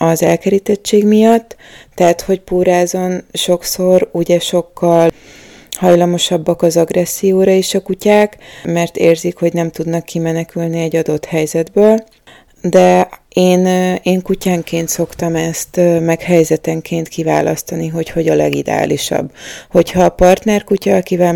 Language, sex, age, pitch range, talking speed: Hungarian, female, 20-39, 165-185 Hz, 120 wpm